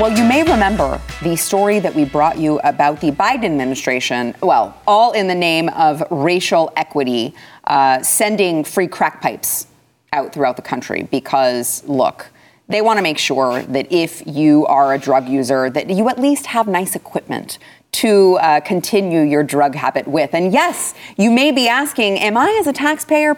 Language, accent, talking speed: English, American, 175 wpm